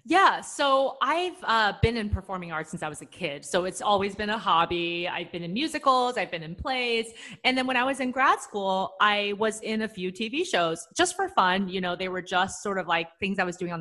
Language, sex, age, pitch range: English, female, 30-49, 170-235 Hz